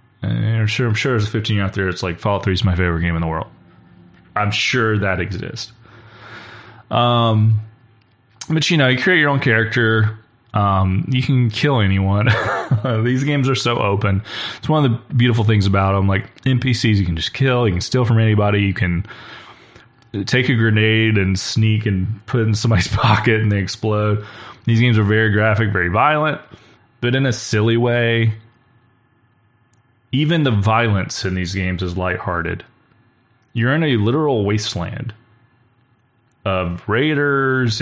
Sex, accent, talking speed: male, American, 165 wpm